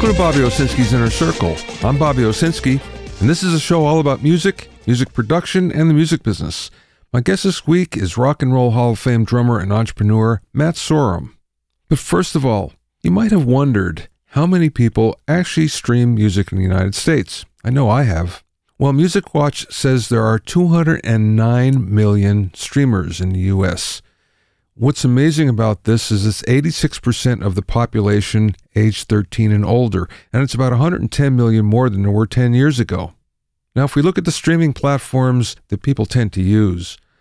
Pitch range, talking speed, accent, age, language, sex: 105-140 Hz, 180 wpm, American, 50-69, English, male